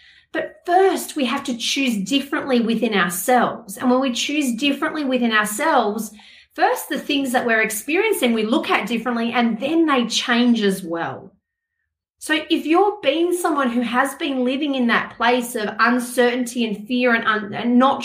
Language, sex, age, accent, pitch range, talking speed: English, female, 30-49, Australian, 220-280 Hz, 175 wpm